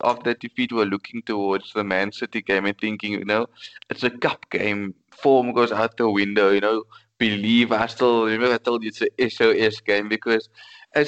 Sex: male